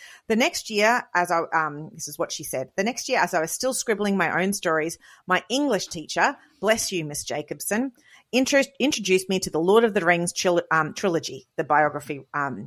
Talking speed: 210 wpm